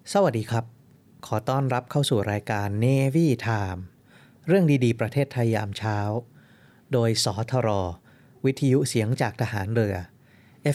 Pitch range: 110-140 Hz